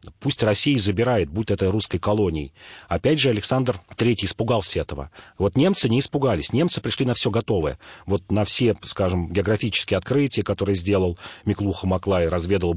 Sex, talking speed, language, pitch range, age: male, 155 wpm, Russian, 95-130 Hz, 40-59